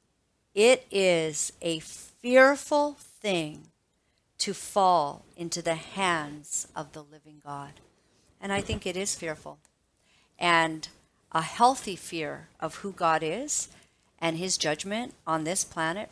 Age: 50-69